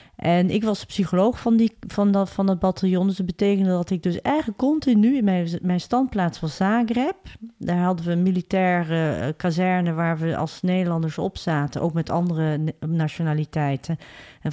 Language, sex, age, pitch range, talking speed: Dutch, female, 40-59, 165-200 Hz, 170 wpm